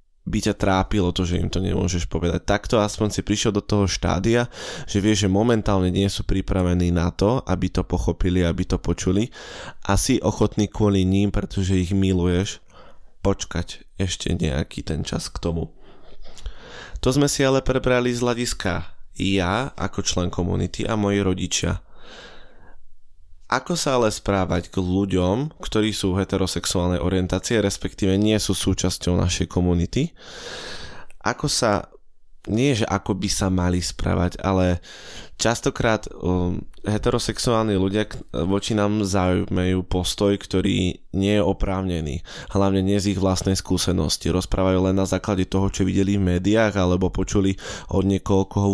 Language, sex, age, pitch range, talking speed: Slovak, male, 20-39, 90-105 Hz, 140 wpm